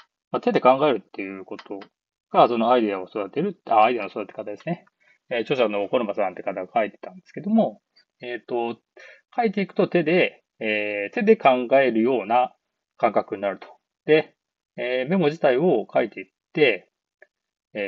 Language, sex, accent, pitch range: Japanese, male, native, 115-175 Hz